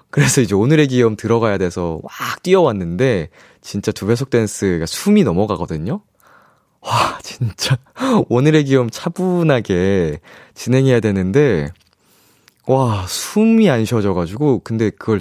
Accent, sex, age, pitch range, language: native, male, 20-39, 95-135 Hz, Korean